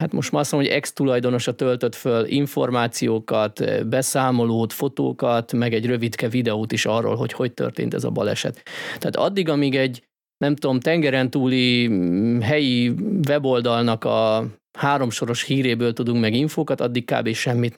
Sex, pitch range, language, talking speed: male, 115-145 Hz, Hungarian, 145 wpm